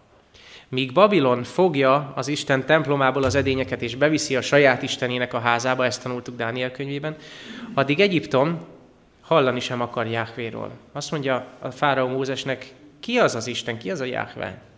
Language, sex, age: Hungarian, male, 20-39